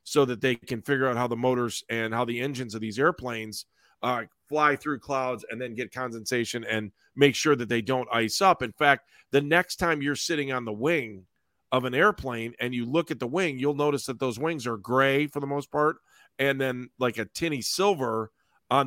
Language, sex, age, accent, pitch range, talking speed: English, male, 40-59, American, 125-155 Hz, 220 wpm